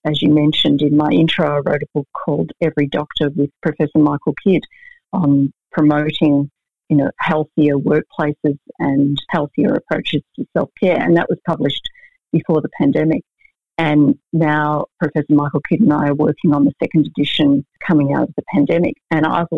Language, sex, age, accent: English, female, 40-59, Australian